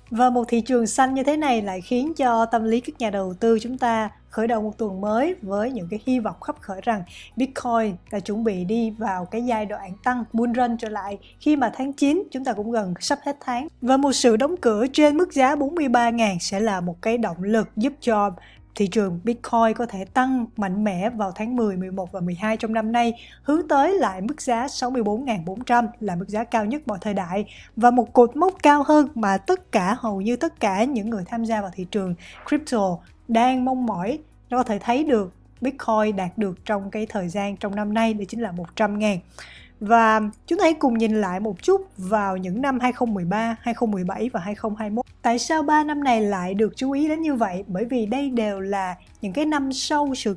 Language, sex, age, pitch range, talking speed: Vietnamese, female, 20-39, 210-255 Hz, 220 wpm